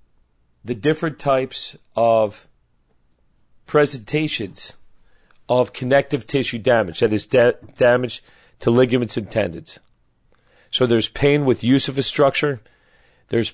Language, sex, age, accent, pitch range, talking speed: English, male, 40-59, American, 110-135 Hz, 110 wpm